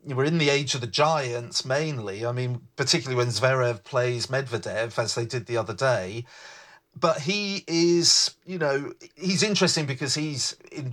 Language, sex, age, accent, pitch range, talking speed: English, male, 40-59, British, 125-155 Hz, 170 wpm